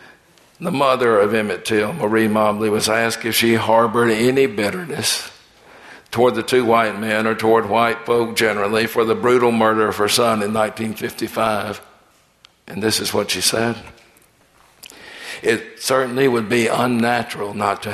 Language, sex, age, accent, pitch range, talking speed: English, male, 60-79, American, 110-130 Hz, 155 wpm